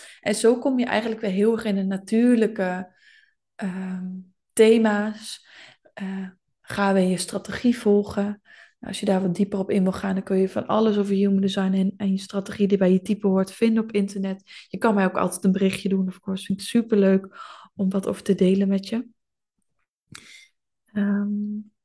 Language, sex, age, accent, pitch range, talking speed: Dutch, female, 20-39, Dutch, 190-215 Hz, 195 wpm